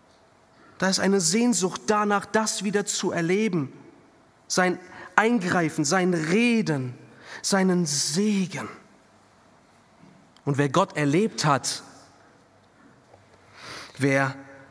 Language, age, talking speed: German, 40-59, 85 wpm